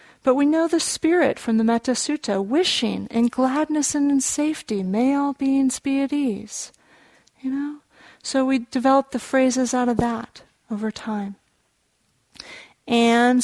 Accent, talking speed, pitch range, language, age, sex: American, 150 wpm, 215-260 Hz, English, 40-59, female